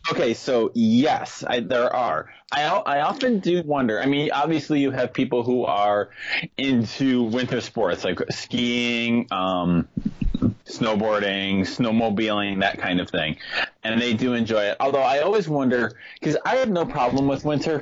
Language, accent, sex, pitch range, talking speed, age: English, American, male, 105-140 Hz, 160 wpm, 20-39